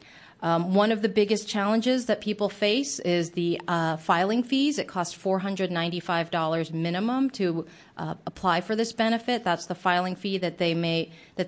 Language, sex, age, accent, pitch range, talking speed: English, female, 30-49, American, 165-195 Hz, 200 wpm